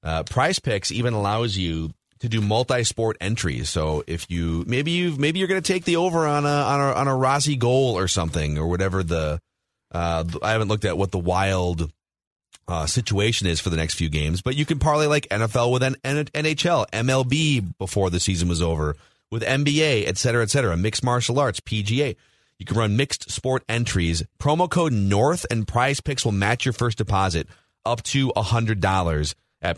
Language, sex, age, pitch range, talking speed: English, male, 30-49, 90-130 Hz, 200 wpm